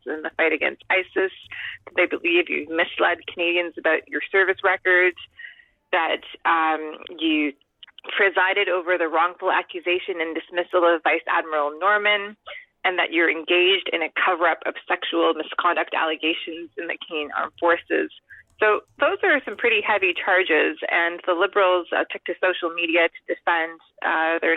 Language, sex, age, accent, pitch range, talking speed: English, female, 30-49, American, 170-215 Hz, 155 wpm